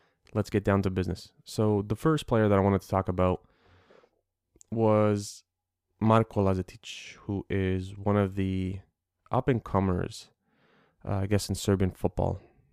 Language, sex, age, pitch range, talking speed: English, male, 20-39, 90-105 Hz, 140 wpm